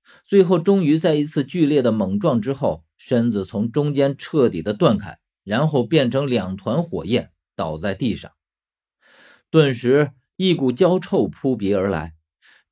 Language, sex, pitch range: Chinese, male, 105-155 Hz